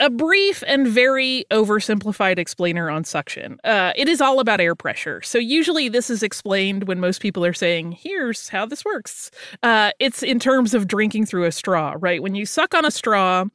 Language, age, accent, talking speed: English, 30-49, American, 200 wpm